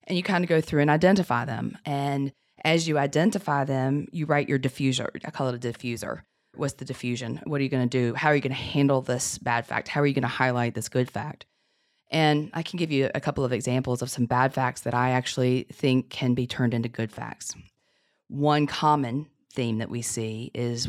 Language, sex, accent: English, female, American